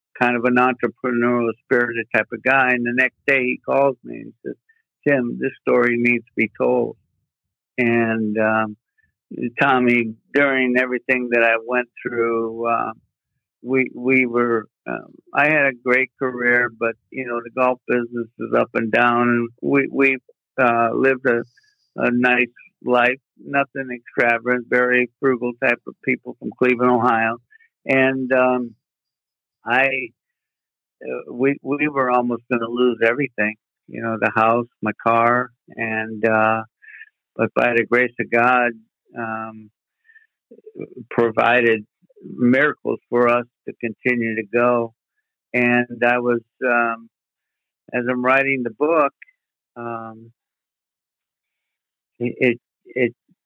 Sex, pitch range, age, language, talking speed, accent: male, 115-130 Hz, 60-79, English, 135 wpm, American